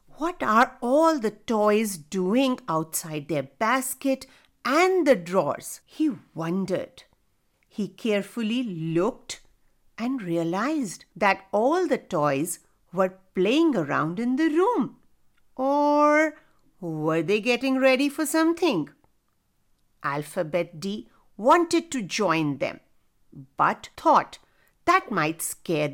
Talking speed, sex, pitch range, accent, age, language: 110 wpm, female, 175-275 Hz, Indian, 50-69, English